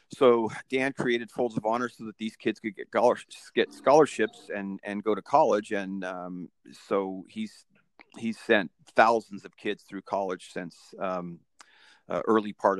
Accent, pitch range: American, 100-120 Hz